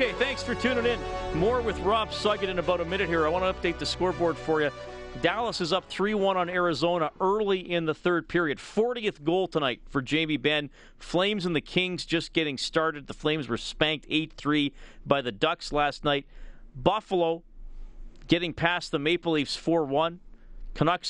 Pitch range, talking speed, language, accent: 150-175 Hz, 180 wpm, English, American